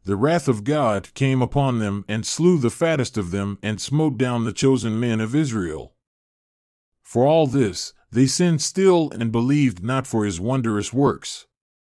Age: 40-59